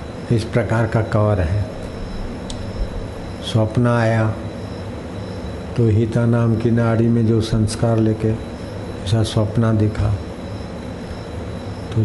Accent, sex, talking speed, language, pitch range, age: native, male, 100 wpm, Hindi, 95-115 Hz, 60-79